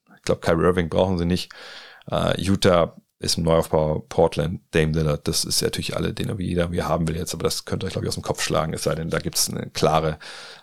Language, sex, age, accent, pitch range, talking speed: German, male, 40-59, German, 80-100 Hz, 260 wpm